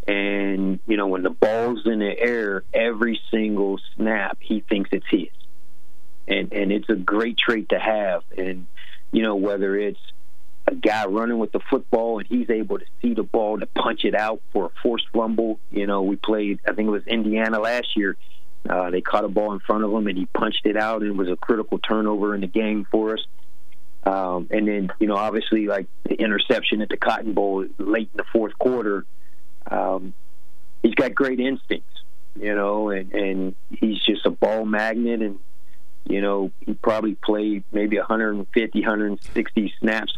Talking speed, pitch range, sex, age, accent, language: 190 wpm, 95-110 Hz, male, 40-59, American, English